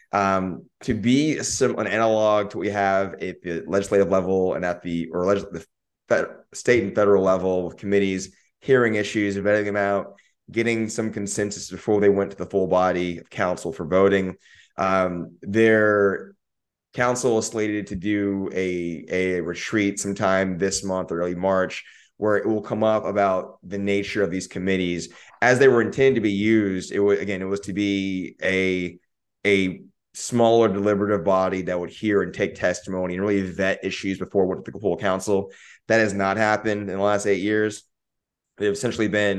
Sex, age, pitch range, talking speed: male, 20-39, 95-105 Hz, 180 wpm